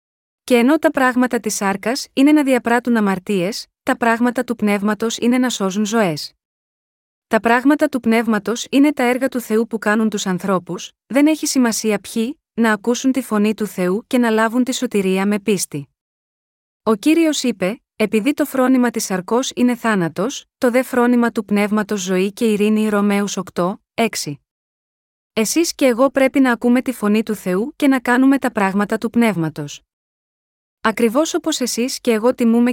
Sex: female